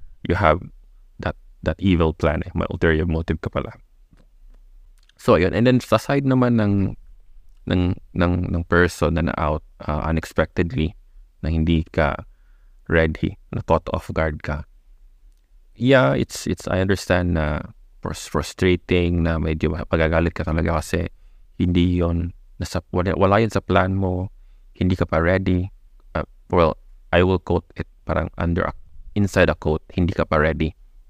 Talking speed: 150 wpm